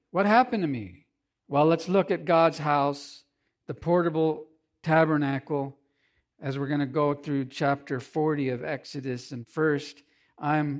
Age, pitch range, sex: 50-69, 135-160 Hz, male